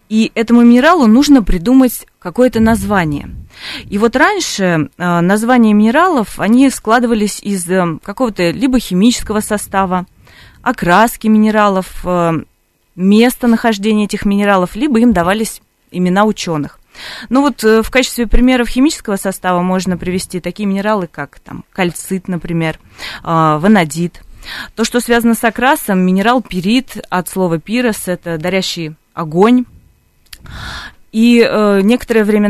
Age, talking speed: 20-39, 120 wpm